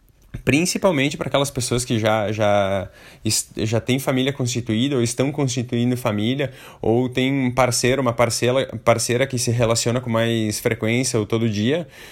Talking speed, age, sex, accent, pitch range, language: 155 wpm, 20-39, male, Brazilian, 115-140 Hz, Portuguese